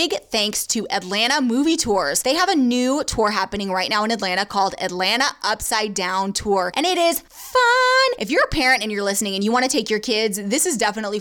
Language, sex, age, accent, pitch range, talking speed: English, female, 20-39, American, 200-255 Hz, 225 wpm